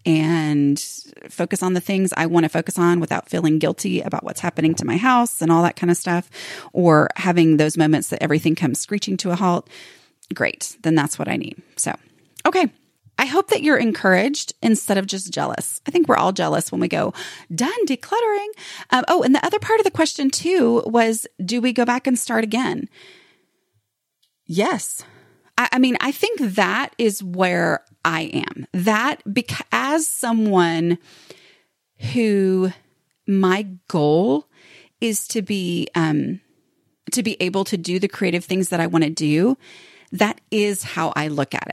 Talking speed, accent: 175 wpm, American